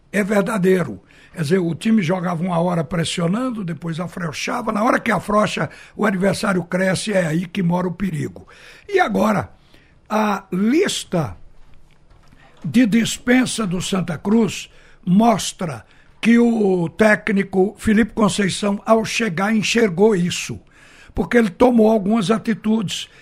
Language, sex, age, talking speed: Portuguese, male, 60-79, 125 wpm